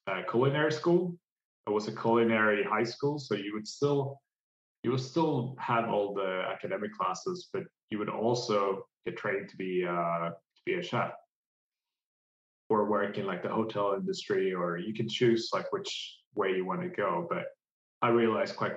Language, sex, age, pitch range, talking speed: English, male, 20-39, 100-135 Hz, 180 wpm